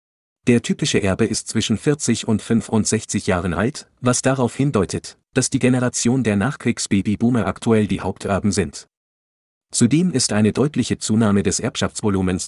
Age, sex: 40-59, male